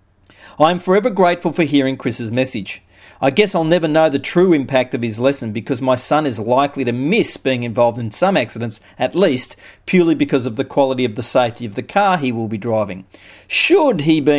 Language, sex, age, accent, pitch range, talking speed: English, male, 40-59, Australian, 115-145 Hz, 215 wpm